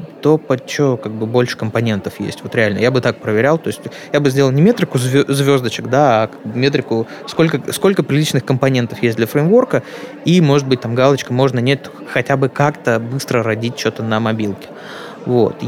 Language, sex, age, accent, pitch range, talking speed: Russian, male, 20-39, native, 115-145 Hz, 180 wpm